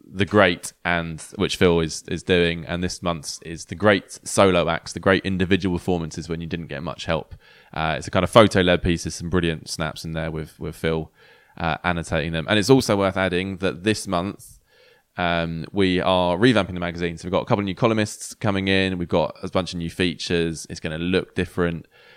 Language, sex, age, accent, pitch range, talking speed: English, male, 20-39, British, 85-100 Hz, 220 wpm